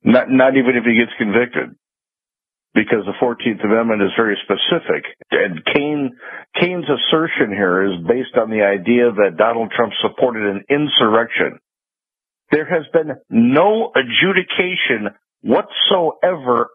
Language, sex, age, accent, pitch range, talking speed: English, male, 60-79, American, 130-210 Hz, 130 wpm